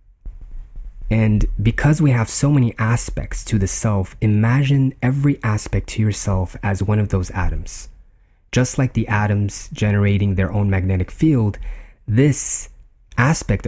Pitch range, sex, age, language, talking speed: 95-115 Hz, male, 30-49, English, 135 wpm